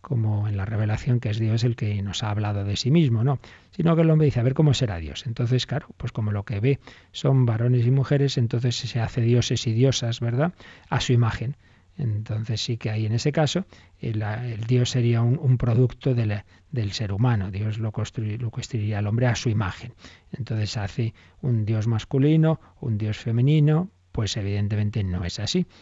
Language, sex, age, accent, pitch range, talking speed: Spanish, male, 40-59, Spanish, 105-125 Hz, 205 wpm